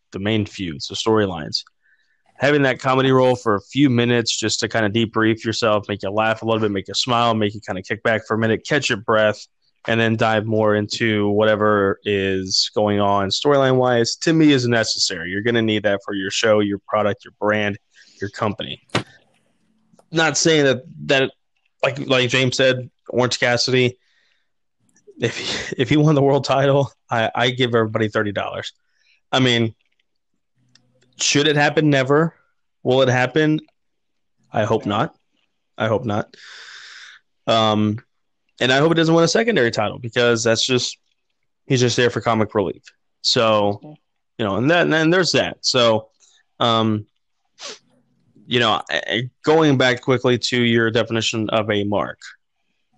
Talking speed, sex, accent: 170 wpm, male, American